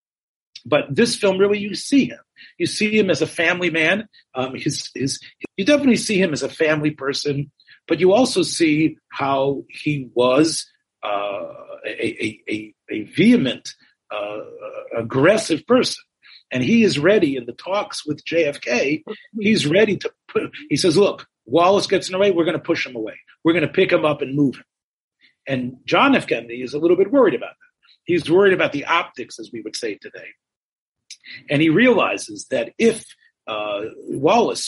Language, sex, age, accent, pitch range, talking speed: English, male, 40-59, American, 155-255 Hz, 180 wpm